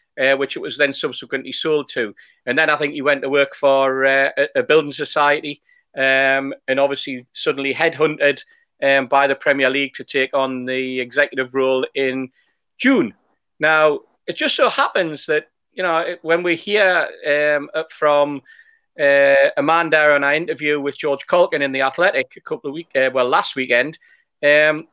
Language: English